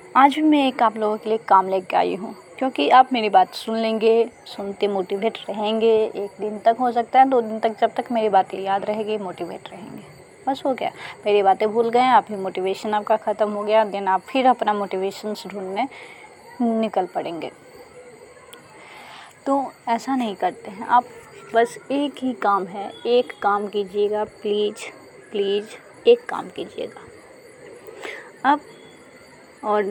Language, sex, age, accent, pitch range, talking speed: Hindi, female, 20-39, native, 210-275 Hz, 160 wpm